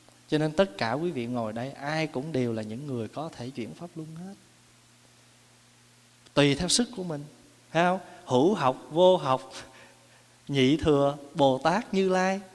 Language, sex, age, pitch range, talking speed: Vietnamese, male, 20-39, 120-155 Hz, 170 wpm